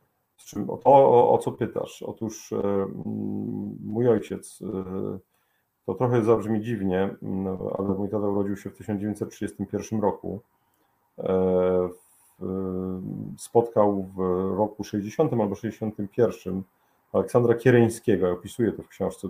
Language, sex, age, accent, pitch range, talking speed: Polish, male, 40-59, native, 95-115 Hz, 105 wpm